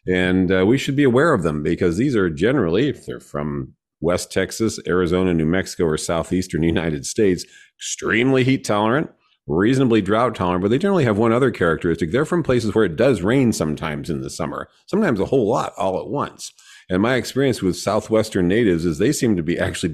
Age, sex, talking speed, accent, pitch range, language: 40-59, male, 200 wpm, American, 80-110 Hz, English